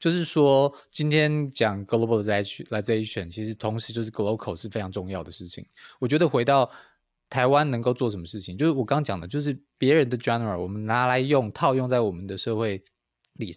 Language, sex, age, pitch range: Chinese, male, 20-39, 100-130 Hz